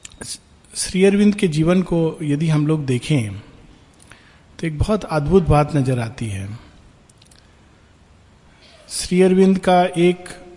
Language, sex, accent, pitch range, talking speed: Hindi, male, native, 130-185 Hz, 120 wpm